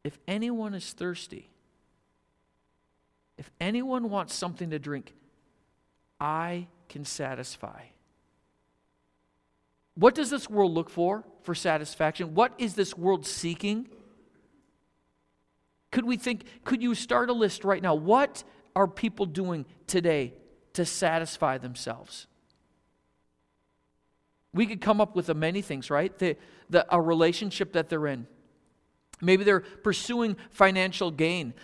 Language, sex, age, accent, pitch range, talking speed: English, male, 50-69, American, 130-195 Hz, 125 wpm